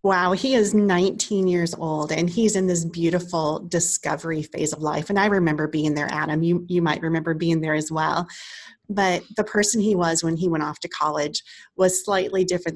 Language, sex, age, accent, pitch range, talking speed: English, female, 30-49, American, 165-195 Hz, 200 wpm